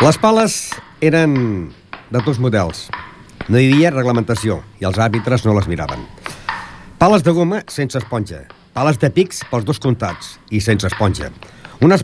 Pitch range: 105-155 Hz